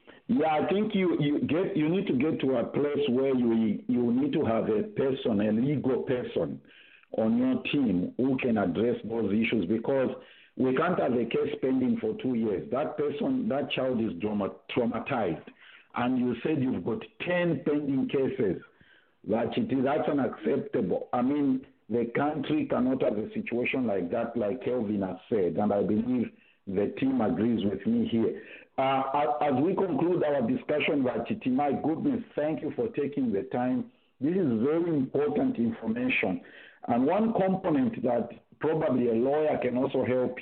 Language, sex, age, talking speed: English, male, 50-69, 165 wpm